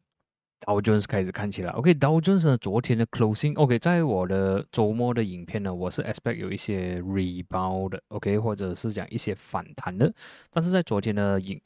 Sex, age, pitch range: male, 20-39, 100-130 Hz